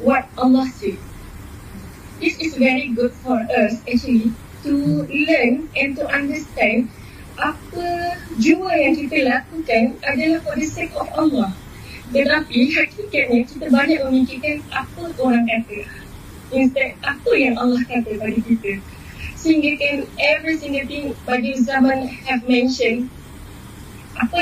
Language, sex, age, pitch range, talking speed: English, female, 20-39, 240-290 Hz, 120 wpm